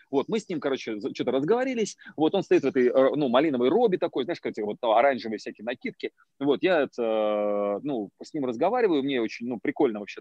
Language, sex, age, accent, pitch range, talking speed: Russian, male, 30-49, native, 115-165 Hz, 200 wpm